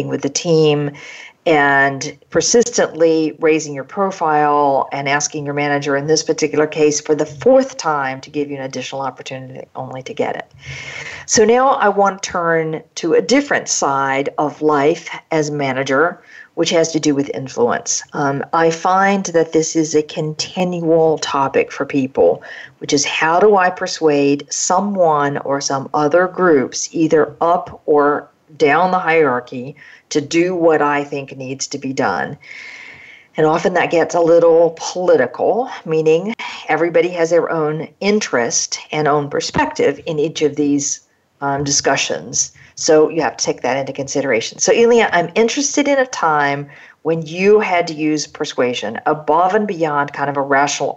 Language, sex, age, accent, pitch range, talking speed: English, female, 50-69, American, 145-180 Hz, 160 wpm